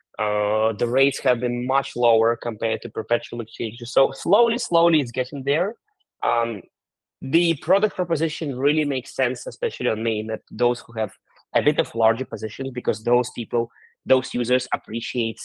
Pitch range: 110-140 Hz